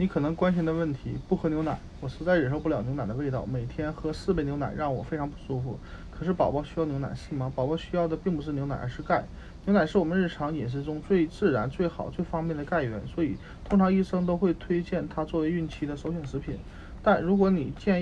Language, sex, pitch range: Chinese, male, 130-170 Hz